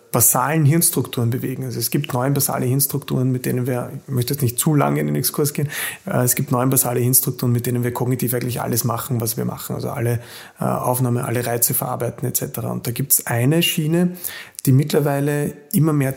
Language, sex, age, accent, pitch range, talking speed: German, male, 30-49, German, 125-145 Hz, 200 wpm